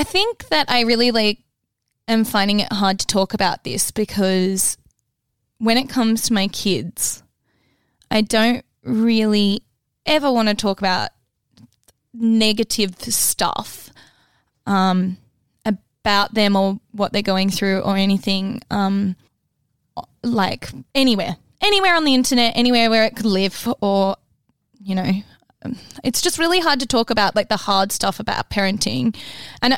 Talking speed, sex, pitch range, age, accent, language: 140 wpm, female, 195-240 Hz, 10-29, Australian, English